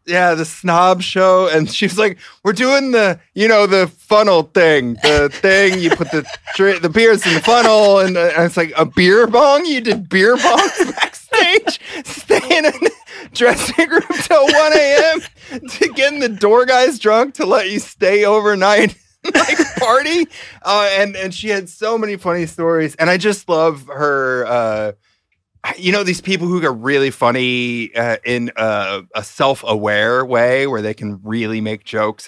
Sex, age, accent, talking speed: male, 30-49, American, 175 wpm